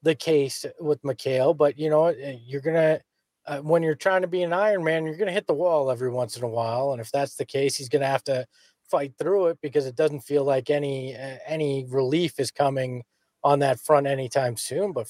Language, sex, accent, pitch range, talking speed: English, male, American, 145-215 Hz, 230 wpm